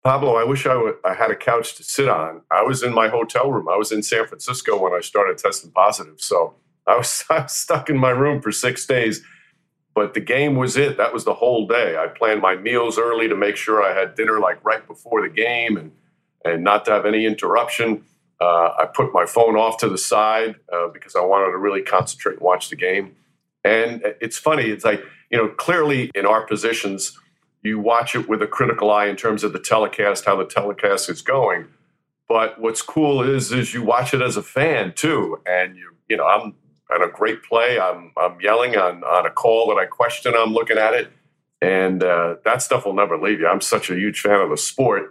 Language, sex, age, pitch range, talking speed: English, male, 50-69, 105-120 Hz, 230 wpm